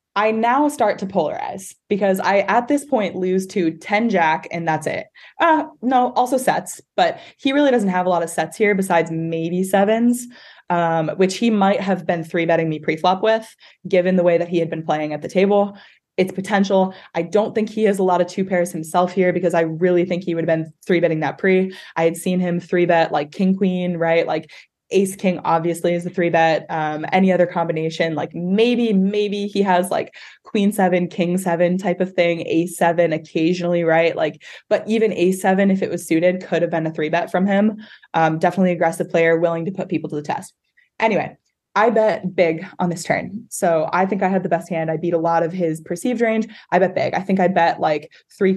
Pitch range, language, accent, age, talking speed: 165-200 Hz, English, American, 20-39, 215 wpm